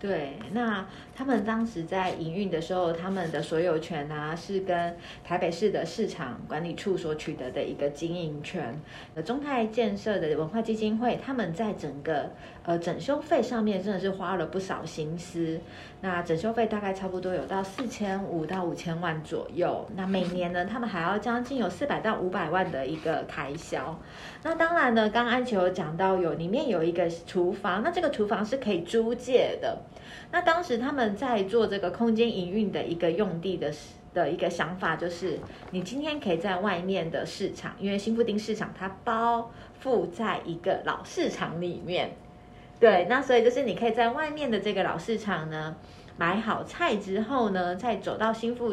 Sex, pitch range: female, 170-225 Hz